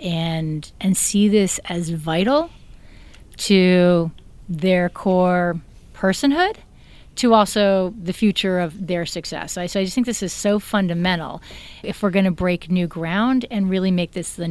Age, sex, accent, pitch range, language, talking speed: 30-49, female, American, 180-205 Hz, English, 160 wpm